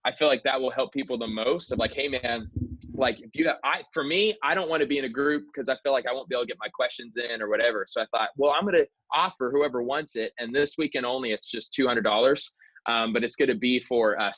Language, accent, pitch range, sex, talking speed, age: English, American, 115-145 Hz, male, 290 wpm, 20-39